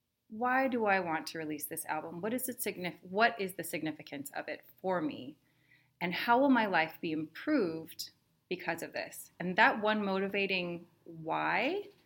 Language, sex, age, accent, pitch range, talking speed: English, female, 30-49, American, 165-235 Hz, 175 wpm